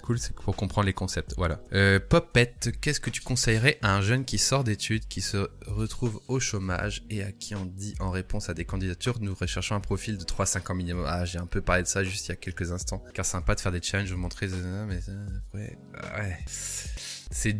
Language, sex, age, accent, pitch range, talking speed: French, male, 20-39, French, 95-110 Hz, 230 wpm